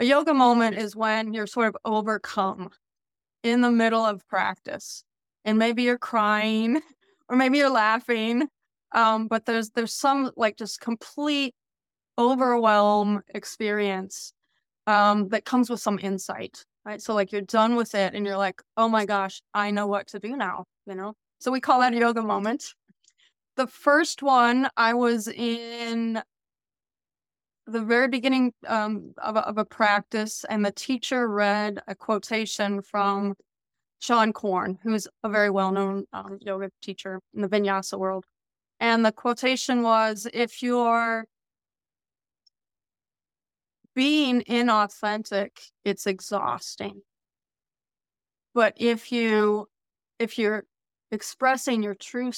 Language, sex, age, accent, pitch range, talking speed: English, female, 20-39, American, 205-240 Hz, 135 wpm